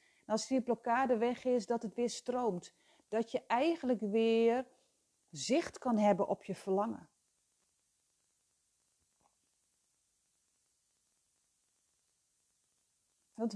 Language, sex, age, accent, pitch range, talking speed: Dutch, female, 40-59, Dutch, 215-285 Hz, 95 wpm